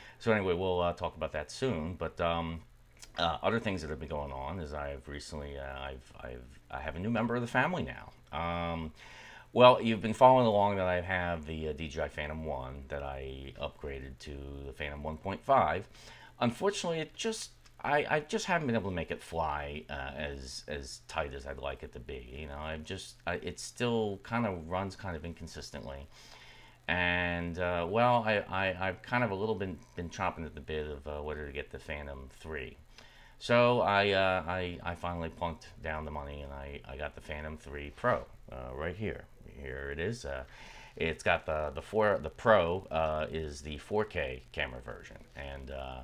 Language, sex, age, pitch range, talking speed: English, male, 30-49, 70-95 Hz, 205 wpm